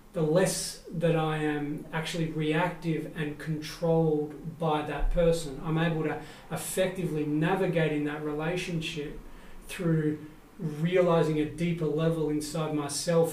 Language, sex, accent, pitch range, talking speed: English, male, Australian, 150-170 Hz, 120 wpm